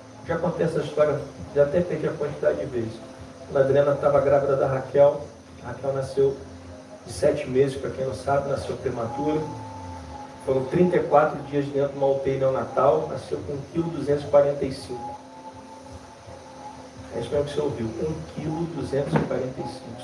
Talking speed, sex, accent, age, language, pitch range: 145 wpm, male, Brazilian, 40-59, Portuguese, 135-170 Hz